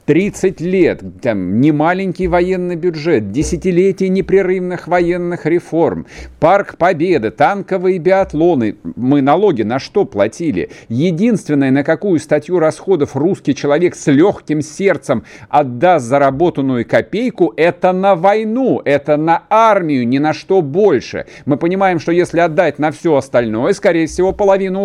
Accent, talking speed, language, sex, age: native, 125 wpm, Russian, male, 50-69